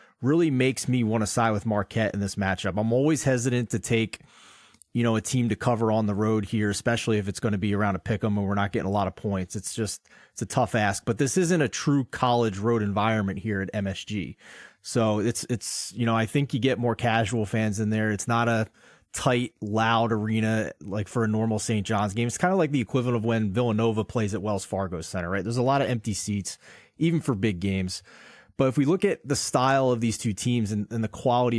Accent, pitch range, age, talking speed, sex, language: American, 105-125 Hz, 30-49, 240 wpm, male, English